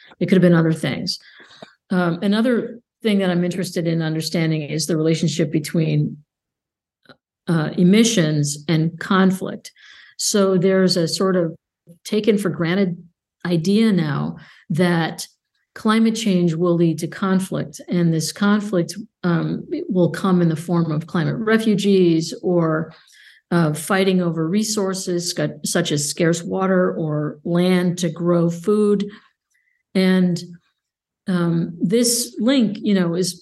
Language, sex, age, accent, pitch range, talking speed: English, female, 50-69, American, 170-205 Hz, 125 wpm